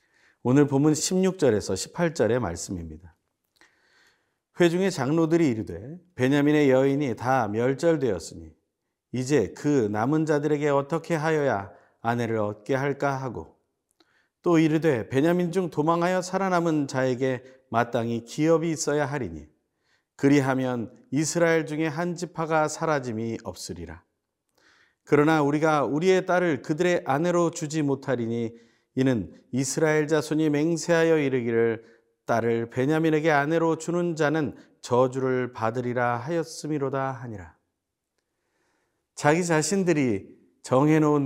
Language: Korean